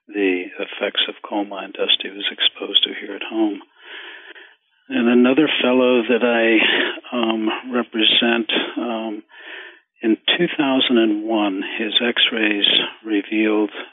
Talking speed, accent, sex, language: 110 wpm, American, male, English